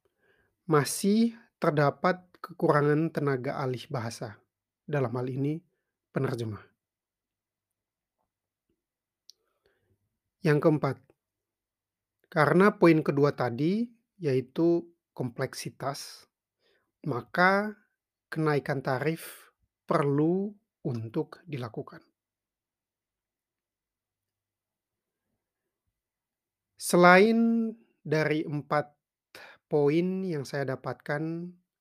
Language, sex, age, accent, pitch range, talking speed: Indonesian, male, 30-49, native, 125-165 Hz, 60 wpm